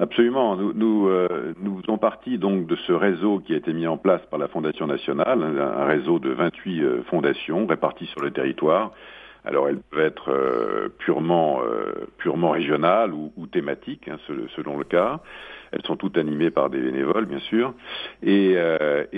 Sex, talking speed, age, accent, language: male, 190 wpm, 50-69, French, French